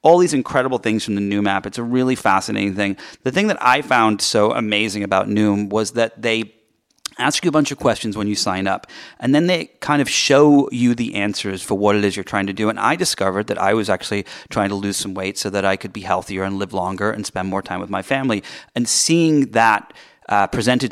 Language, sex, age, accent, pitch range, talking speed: English, male, 30-49, American, 100-125 Hz, 245 wpm